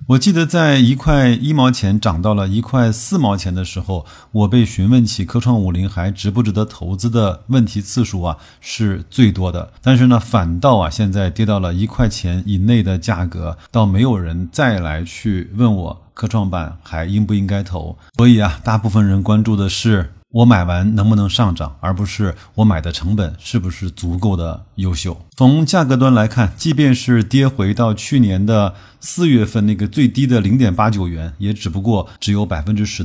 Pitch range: 95-120 Hz